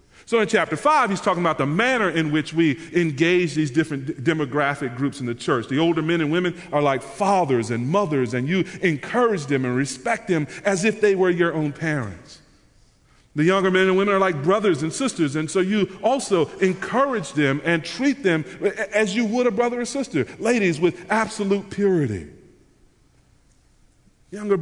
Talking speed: 185 wpm